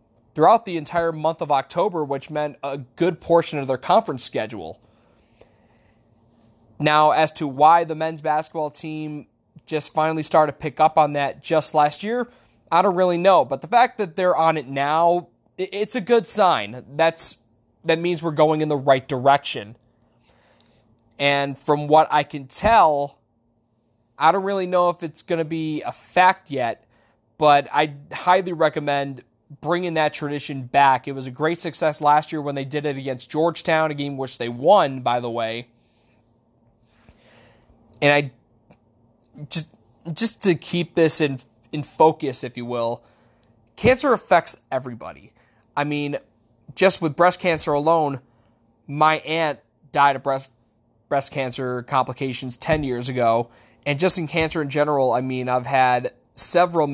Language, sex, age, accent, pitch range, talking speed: English, male, 20-39, American, 120-160 Hz, 160 wpm